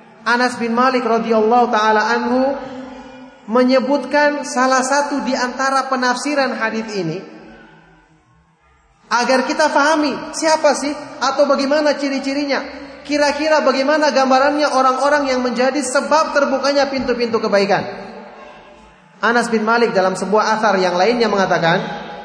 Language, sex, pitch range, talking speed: Indonesian, male, 200-265 Hz, 110 wpm